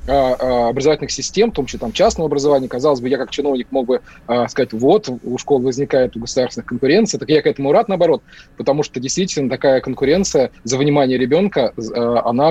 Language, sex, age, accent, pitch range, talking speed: Russian, male, 20-39, native, 130-165 Hz, 185 wpm